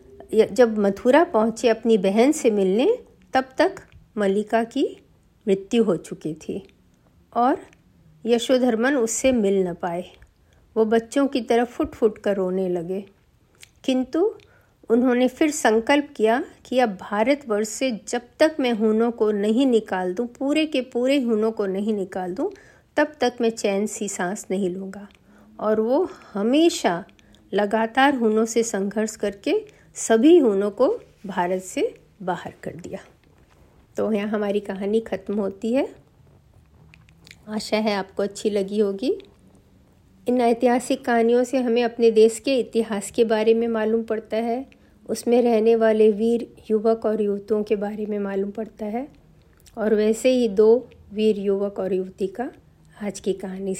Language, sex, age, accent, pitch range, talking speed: Hindi, female, 50-69, native, 200-245 Hz, 145 wpm